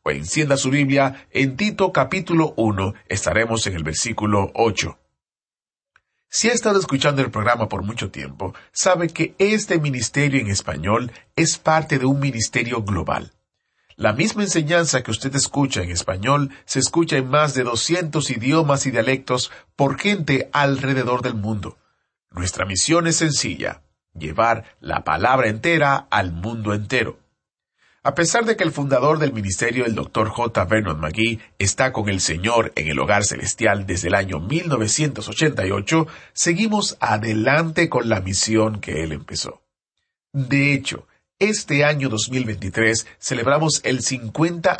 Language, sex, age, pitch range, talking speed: Spanish, male, 40-59, 105-150 Hz, 145 wpm